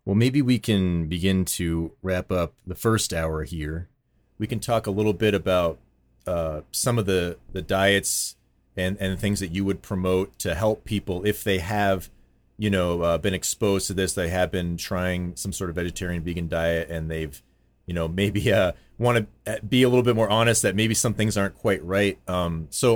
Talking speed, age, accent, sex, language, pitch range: 200 wpm, 30-49, American, male, English, 90-110 Hz